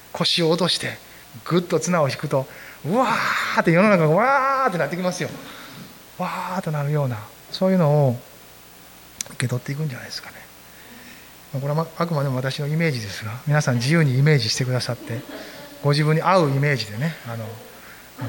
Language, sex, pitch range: Japanese, male, 125-175 Hz